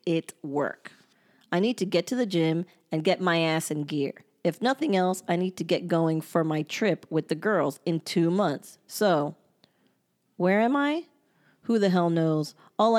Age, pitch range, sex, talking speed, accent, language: 30-49, 165-190 Hz, female, 190 wpm, American, English